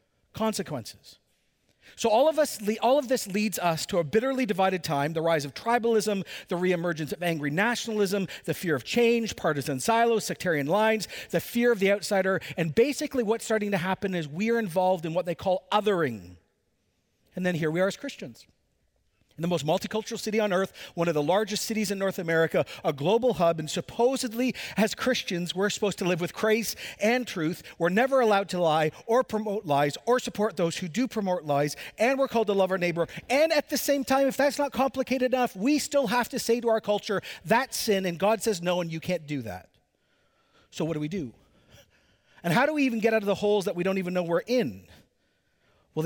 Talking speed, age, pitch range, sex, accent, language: 210 wpm, 50-69, 170-230 Hz, male, American, English